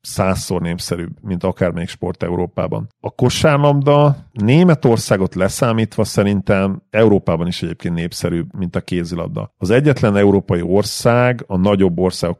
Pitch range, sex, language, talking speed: 95-115 Hz, male, Hungarian, 120 wpm